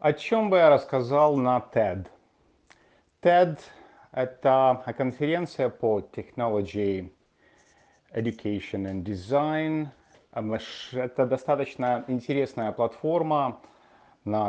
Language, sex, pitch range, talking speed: Russian, male, 110-145 Hz, 85 wpm